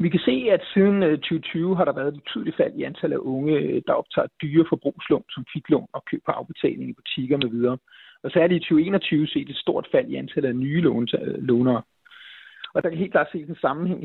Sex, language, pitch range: male, Danish, 140-175 Hz